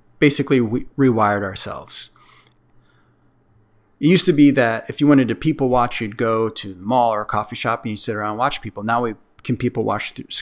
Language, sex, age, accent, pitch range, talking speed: English, male, 30-49, American, 110-140 Hz, 215 wpm